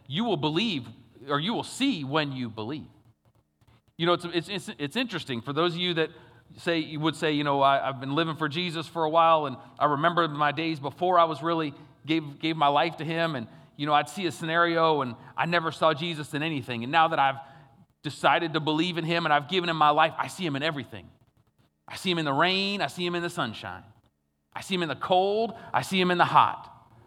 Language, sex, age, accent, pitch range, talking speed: English, male, 30-49, American, 130-170 Hz, 245 wpm